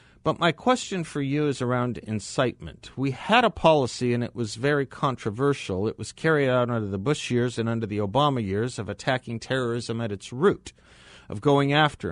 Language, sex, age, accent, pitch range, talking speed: English, male, 40-59, American, 95-135 Hz, 195 wpm